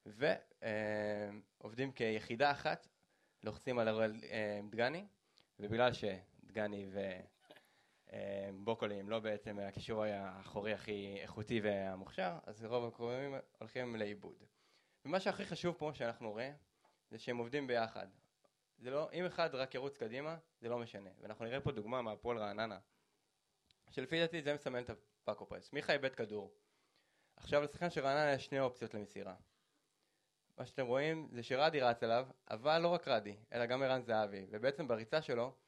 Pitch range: 105-140 Hz